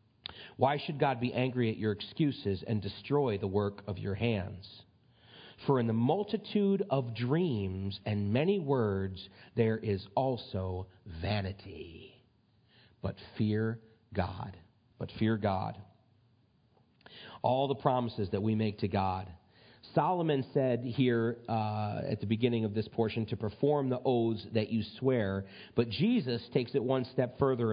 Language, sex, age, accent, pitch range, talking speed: English, male, 40-59, American, 110-140 Hz, 145 wpm